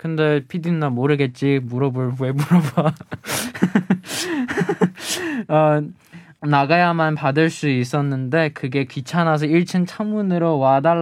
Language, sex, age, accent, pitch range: Chinese, male, 20-39, Korean, 130-175 Hz